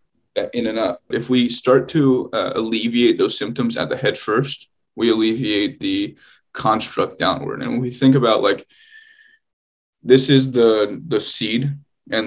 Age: 20-39